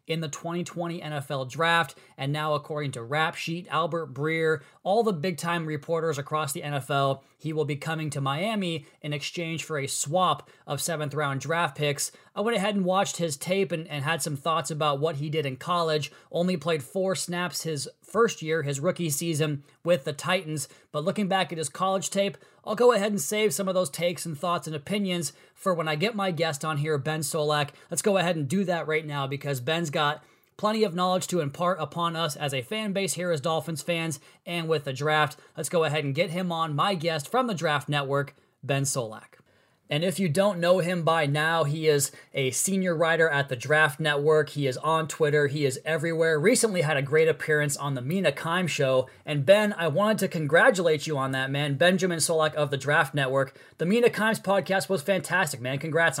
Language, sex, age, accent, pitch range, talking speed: English, male, 20-39, American, 145-180 Hz, 215 wpm